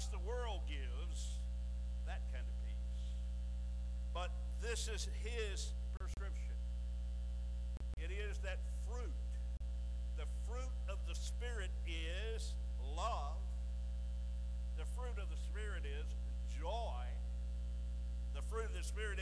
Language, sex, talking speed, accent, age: English, male, 110 wpm, American, 60-79